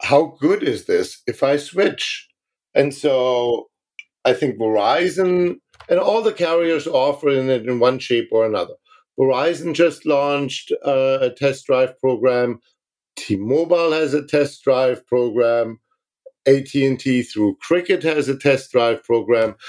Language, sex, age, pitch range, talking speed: English, male, 50-69, 135-165 Hz, 135 wpm